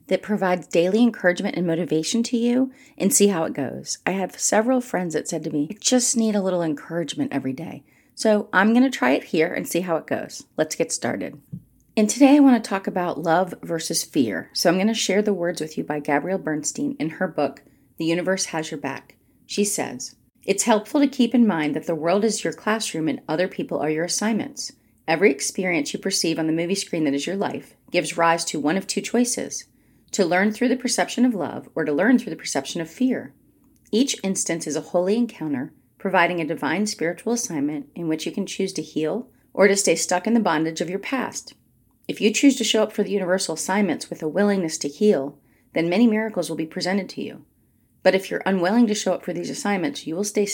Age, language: 30-49, English